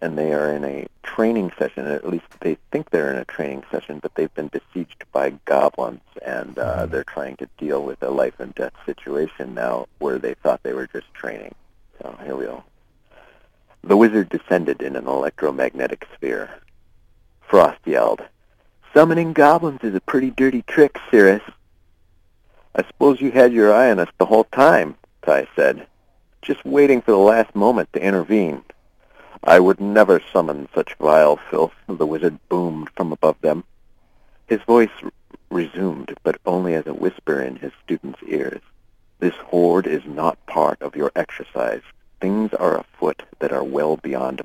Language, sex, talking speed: English, male, 165 wpm